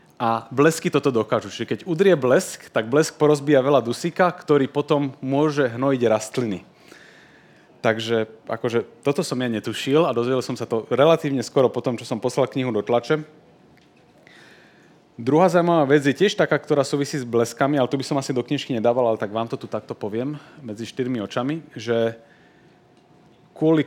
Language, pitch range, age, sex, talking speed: Slovak, 115-150 Hz, 30-49, male, 175 wpm